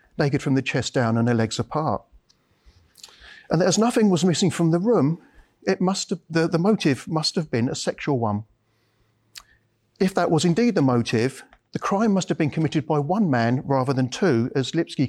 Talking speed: 195 wpm